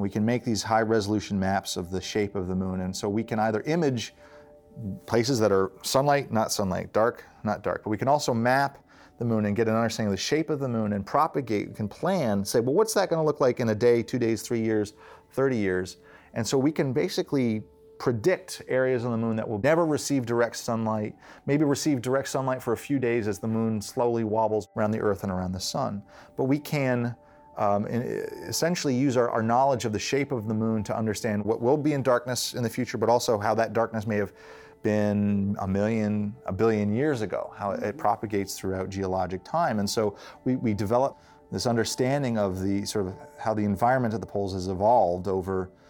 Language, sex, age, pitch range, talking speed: English, male, 30-49, 100-130 Hz, 220 wpm